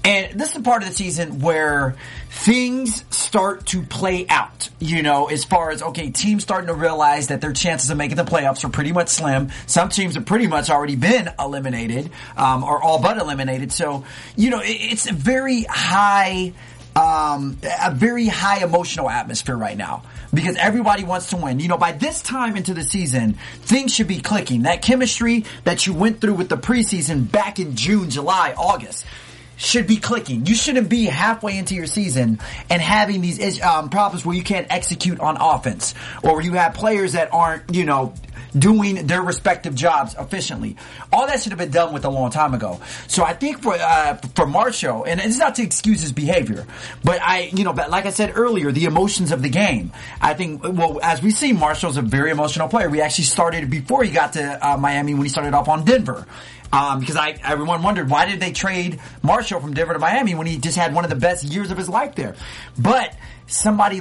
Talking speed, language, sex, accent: 210 wpm, English, male, American